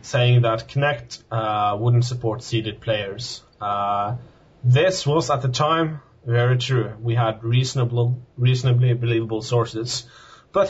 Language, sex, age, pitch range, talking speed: English, male, 30-49, 110-125 Hz, 130 wpm